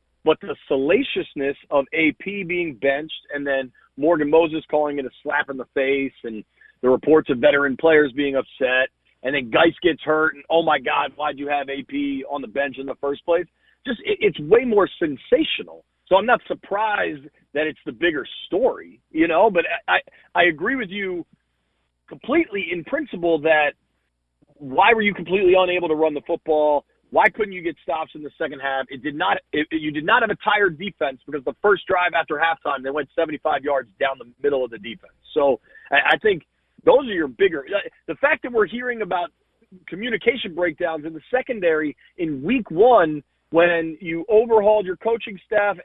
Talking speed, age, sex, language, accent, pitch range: 190 wpm, 40-59, male, English, American, 145-215 Hz